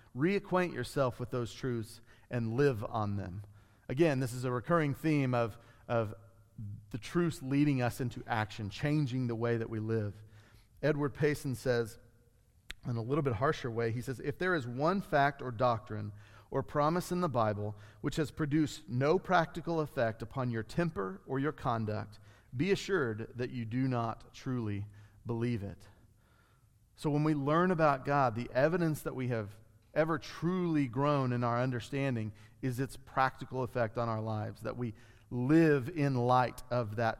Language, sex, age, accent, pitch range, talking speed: English, male, 40-59, American, 110-145 Hz, 170 wpm